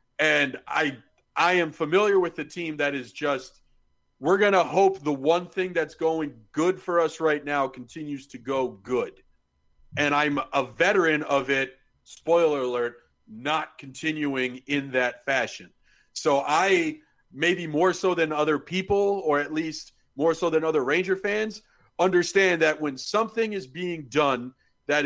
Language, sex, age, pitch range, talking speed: English, male, 40-59, 140-185 Hz, 160 wpm